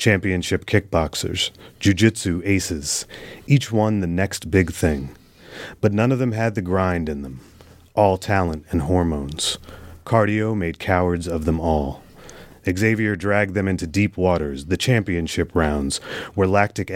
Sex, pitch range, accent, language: male, 85-100 Hz, American, English